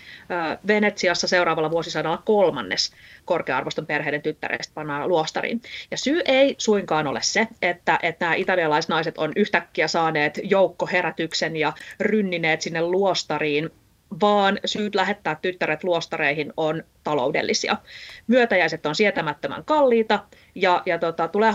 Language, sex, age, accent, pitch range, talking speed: Finnish, female, 30-49, native, 160-210 Hz, 115 wpm